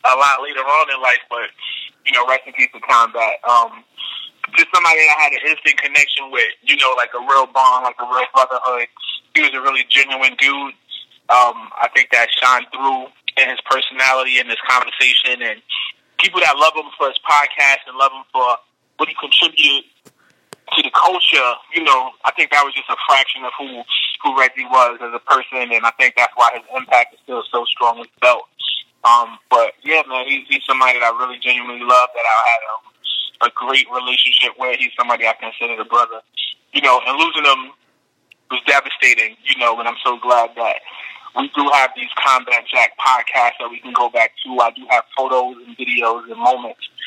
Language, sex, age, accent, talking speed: English, male, 20-39, American, 200 wpm